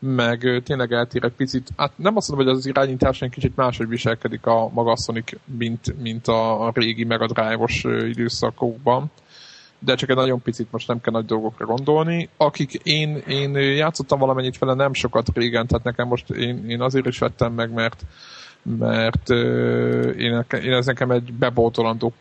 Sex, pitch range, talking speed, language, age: male, 115-130 Hz, 170 wpm, Hungarian, 20-39